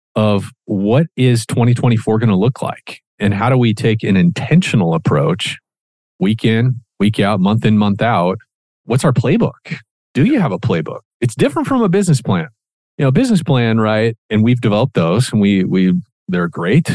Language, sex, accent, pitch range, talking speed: English, male, American, 100-150 Hz, 185 wpm